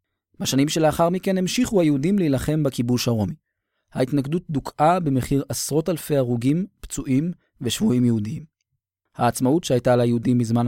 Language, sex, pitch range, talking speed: Hebrew, male, 120-150 Hz, 120 wpm